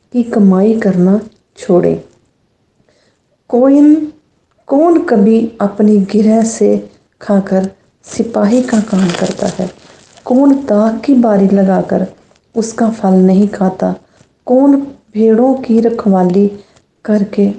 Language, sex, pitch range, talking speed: English, female, 195-240 Hz, 100 wpm